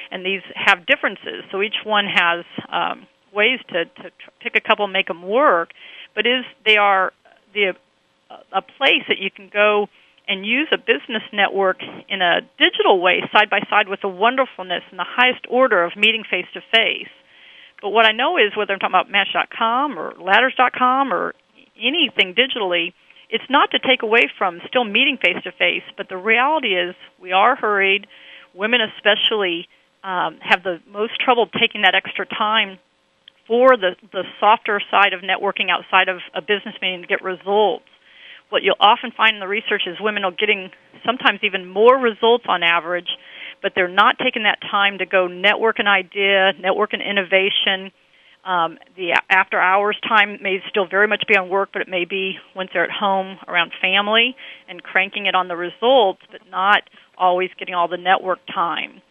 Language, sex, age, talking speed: English, female, 40-59, 180 wpm